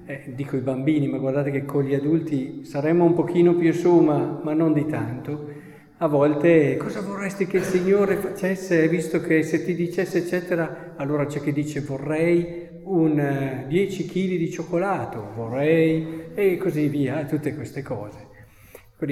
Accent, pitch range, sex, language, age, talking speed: native, 150-190 Hz, male, Italian, 50-69, 165 wpm